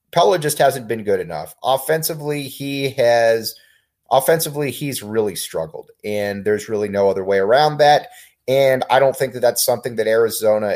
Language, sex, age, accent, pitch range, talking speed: English, male, 30-49, American, 115-155 Hz, 165 wpm